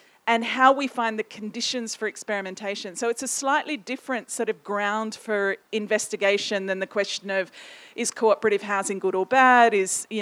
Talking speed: 175 wpm